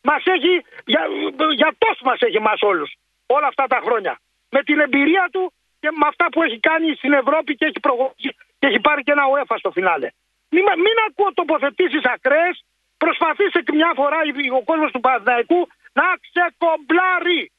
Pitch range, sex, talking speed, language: 260-345 Hz, male, 165 wpm, Greek